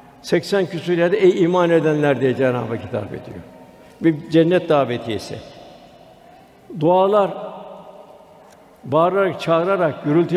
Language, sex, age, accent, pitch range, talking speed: Turkish, male, 60-79, native, 155-185 Hz, 100 wpm